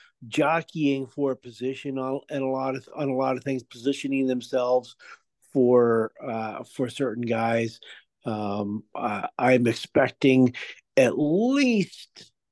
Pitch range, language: 110-135 Hz, English